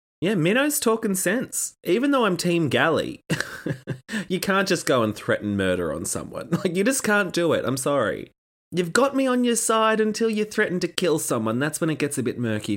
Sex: male